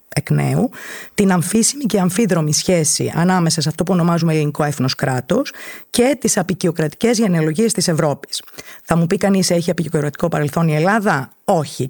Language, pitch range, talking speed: Greek, 155-210 Hz, 145 wpm